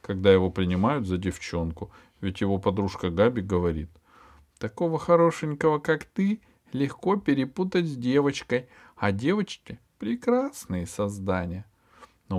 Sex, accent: male, native